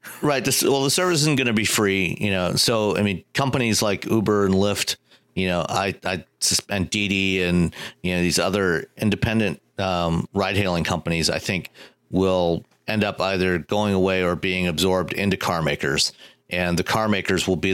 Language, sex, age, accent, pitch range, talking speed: English, male, 40-59, American, 90-100 Hz, 190 wpm